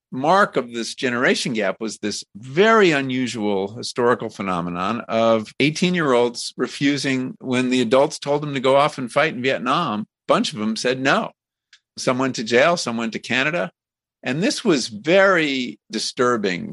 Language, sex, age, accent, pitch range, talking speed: English, male, 50-69, American, 110-145 Hz, 160 wpm